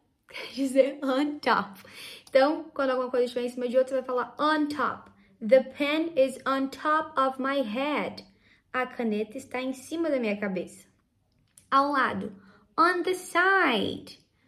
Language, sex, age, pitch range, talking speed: Portuguese, female, 10-29, 225-285 Hz, 160 wpm